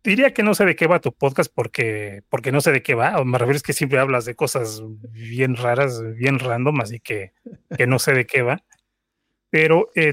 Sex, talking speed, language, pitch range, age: male, 230 wpm, Spanish, 115-145 Hz, 30-49